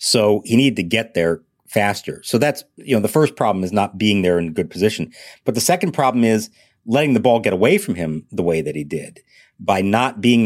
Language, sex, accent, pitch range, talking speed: English, male, American, 95-125 Hz, 235 wpm